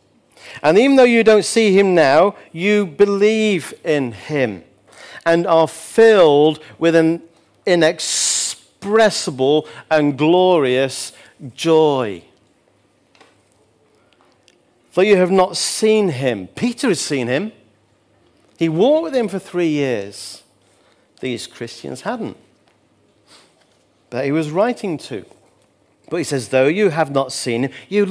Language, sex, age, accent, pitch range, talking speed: English, male, 40-59, British, 150-230 Hz, 120 wpm